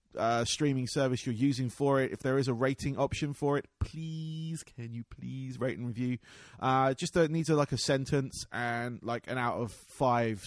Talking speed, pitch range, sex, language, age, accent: 205 wpm, 125-155 Hz, male, English, 20-39, British